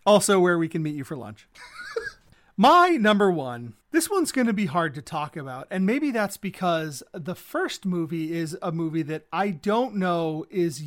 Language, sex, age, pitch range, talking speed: English, male, 30-49, 155-210 Hz, 195 wpm